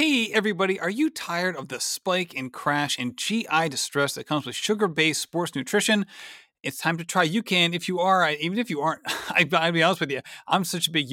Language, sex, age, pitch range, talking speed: English, male, 30-49, 145-200 Hz, 215 wpm